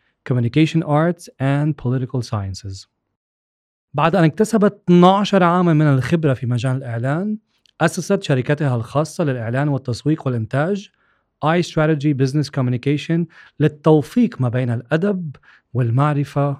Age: 40-59